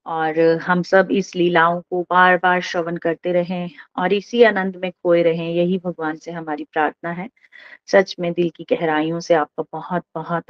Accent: native